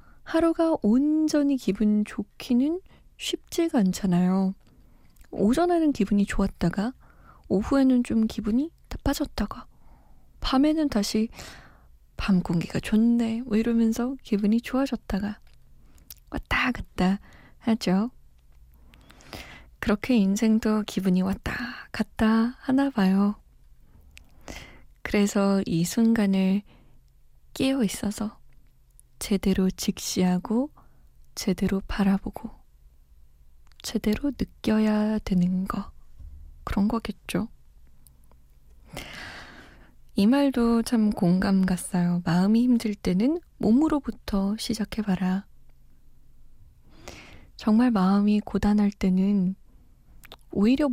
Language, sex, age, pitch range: Korean, female, 20-39, 190-245 Hz